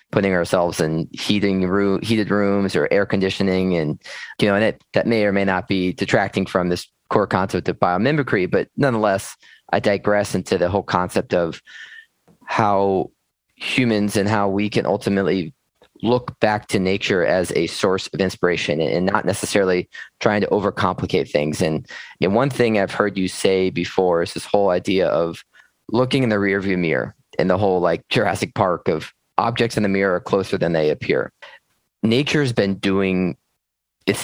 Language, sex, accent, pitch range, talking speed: English, male, American, 95-110 Hz, 180 wpm